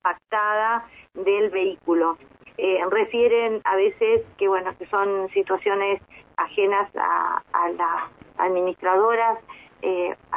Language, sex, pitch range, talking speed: Spanish, female, 190-250 Hz, 100 wpm